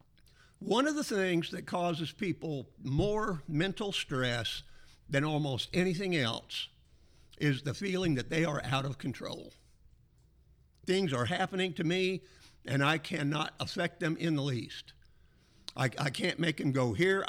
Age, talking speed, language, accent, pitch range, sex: 50-69, 150 wpm, English, American, 135-180 Hz, male